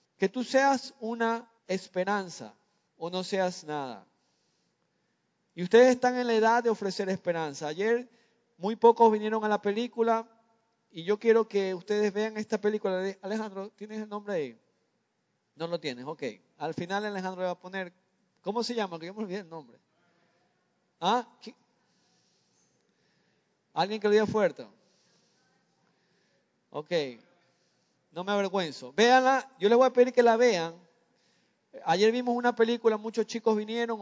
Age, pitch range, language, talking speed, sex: 30-49, 185-230 Hz, Spanish, 145 wpm, male